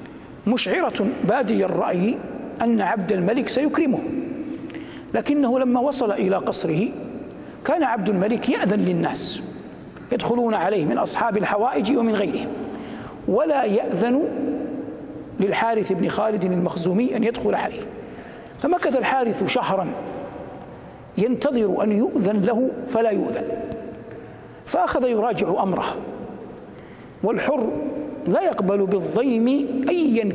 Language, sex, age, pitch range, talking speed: Arabic, male, 60-79, 210-265 Hz, 100 wpm